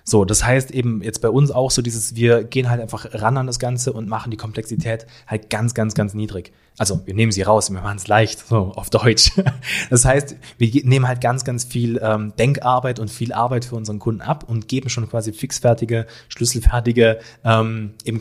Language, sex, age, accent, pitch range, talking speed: German, male, 30-49, German, 110-130 Hz, 210 wpm